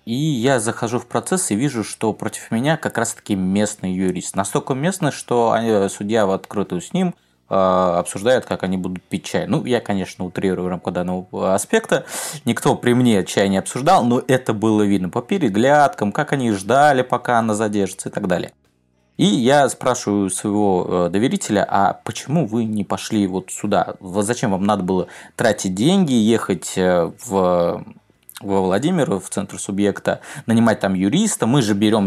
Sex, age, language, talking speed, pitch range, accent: male, 20-39, Russian, 165 wpm, 95-120 Hz, native